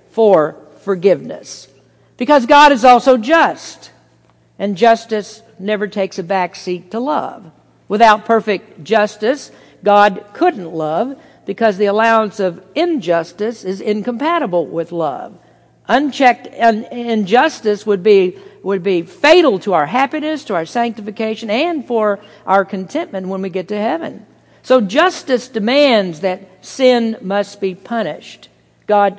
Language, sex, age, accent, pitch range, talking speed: English, female, 50-69, American, 185-230 Hz, 130 wpm